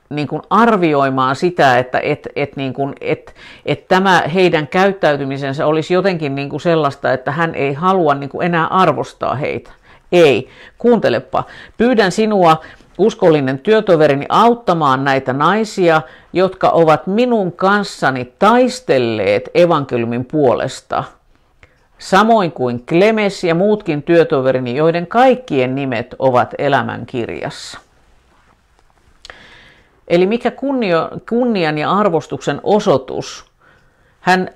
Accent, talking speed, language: native, 110 wpm, Finnish